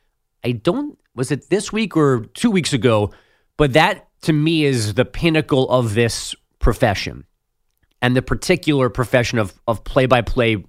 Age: 30-49